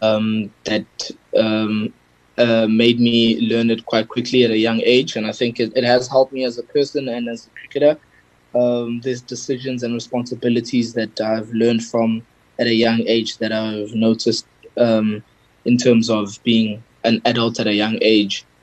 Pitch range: 110-120 Hz